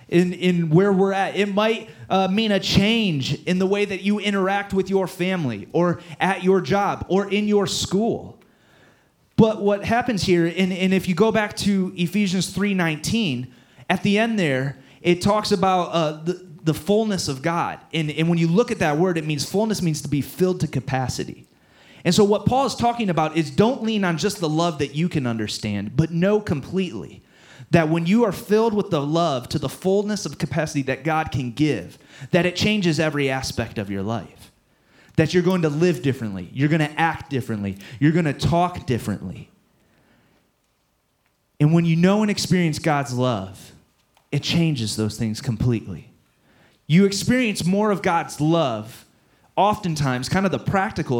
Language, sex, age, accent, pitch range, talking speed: English, male, 30-49, American, 135-190 Hz, 180 wpm